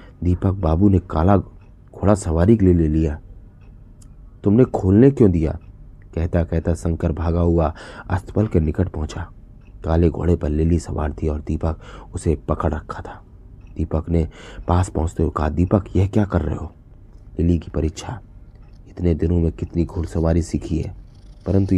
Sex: male